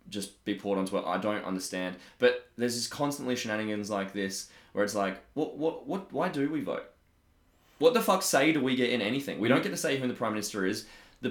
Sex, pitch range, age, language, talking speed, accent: male, 95-120 Hz, 20-39, English, 240 wpm, Australian